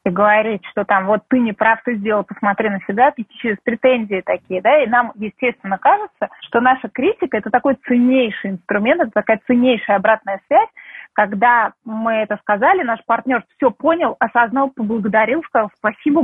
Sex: female